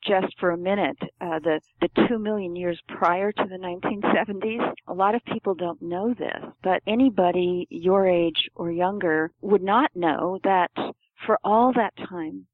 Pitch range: 170-210 Hz